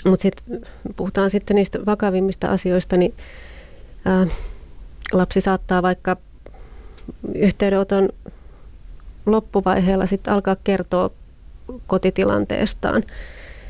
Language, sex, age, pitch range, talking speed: Finnish, female, 30-49, 175-200 Hz, 80 wpm